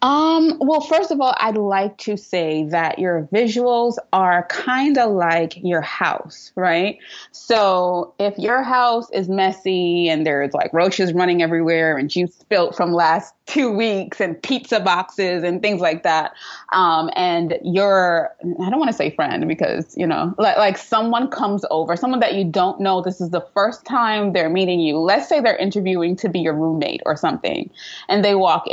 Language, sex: English, female